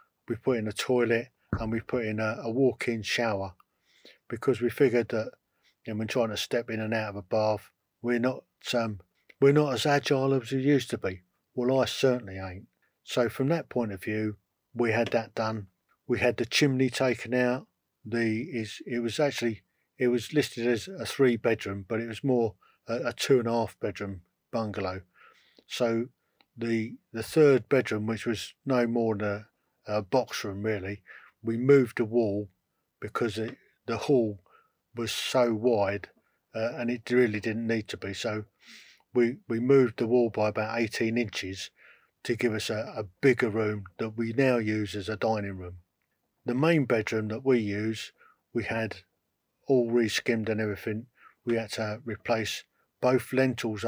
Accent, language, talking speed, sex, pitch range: British, English, 175 wpm, male, 105-125 Hz